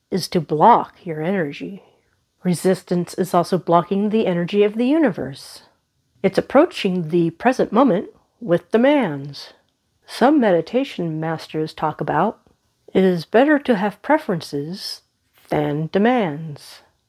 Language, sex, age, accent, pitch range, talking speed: English, female, 50-69, American, 160-245 Hz, 120 wpm